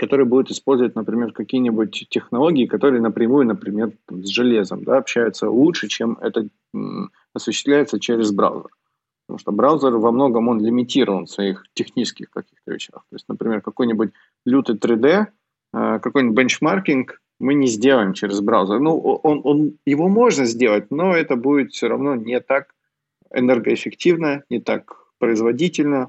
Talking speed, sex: 140 wpm, male